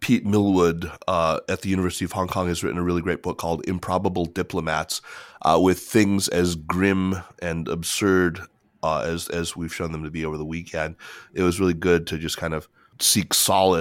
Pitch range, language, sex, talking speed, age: 80-95 Hz, English, male, 200 wpm, 30-49